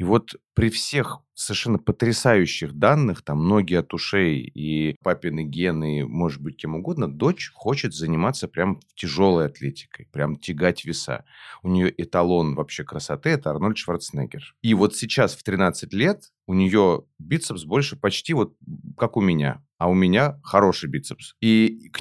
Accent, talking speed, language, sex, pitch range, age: native, 160 wpm, Russian, male, 90-115 Hz, 30-49